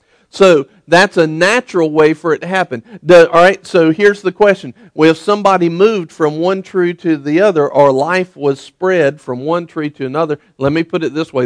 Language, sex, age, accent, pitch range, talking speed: English, male, 50-69, American, 140-185 Hz, 205 wpm